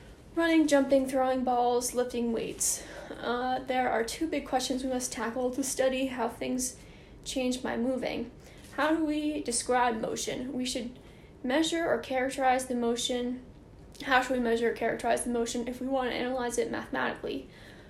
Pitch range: 245-275 Hz